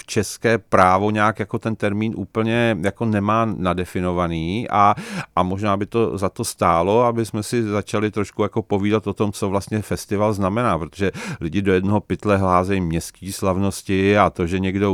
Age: 40-59